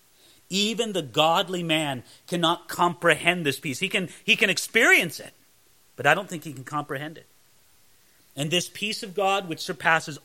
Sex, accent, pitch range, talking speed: male, American, 155-205 Hz, 170 wpm